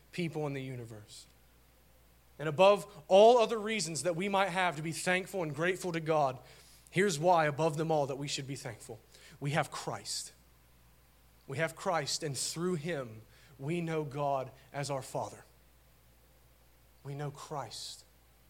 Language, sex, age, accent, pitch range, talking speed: English, male, 40-59, American, 115-190 Hz, 155 wpm